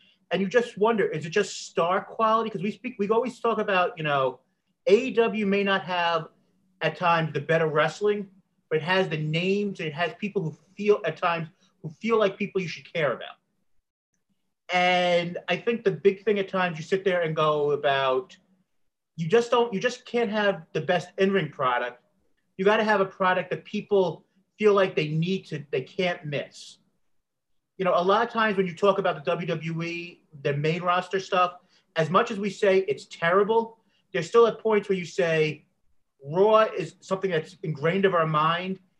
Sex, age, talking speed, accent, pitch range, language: male, 40-59, 195 wpm, American, 165-200 Hz, English